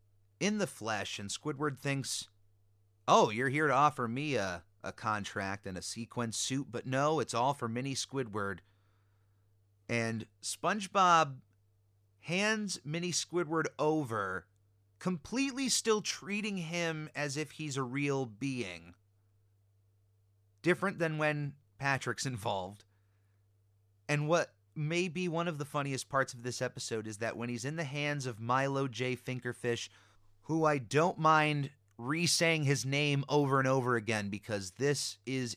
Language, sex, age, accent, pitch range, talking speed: English, male, 30-49, American, 100-155 Hz, 140 wpm